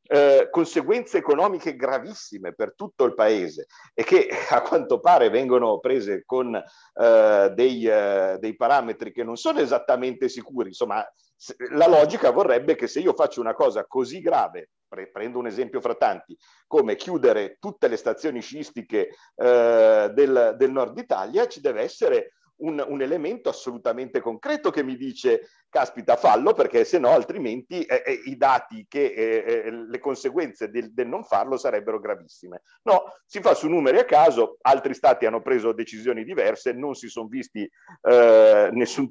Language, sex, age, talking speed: Italian, male, 50-69, 160 wpm